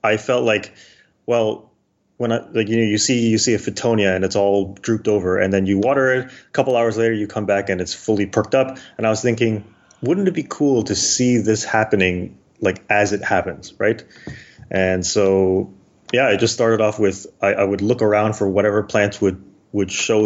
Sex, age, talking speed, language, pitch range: male, 20-39, 215 wpm, English, 95-110 Hz